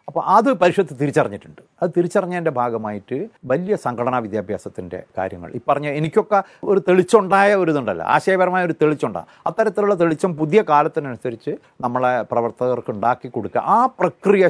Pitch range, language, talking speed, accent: 120-185 Hz, Malayalam, 125 wpm, native